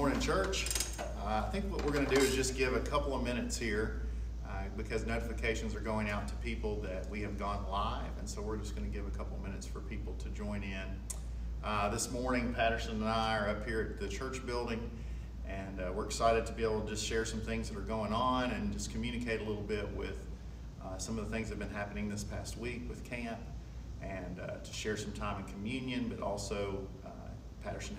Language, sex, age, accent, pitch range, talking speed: English, male, 40-59, American, 95-115 Hz, 230 wpm